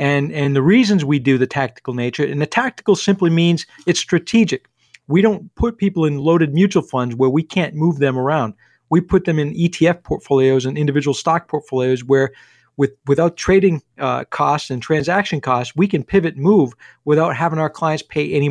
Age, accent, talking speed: 50-69, American, 190 wpm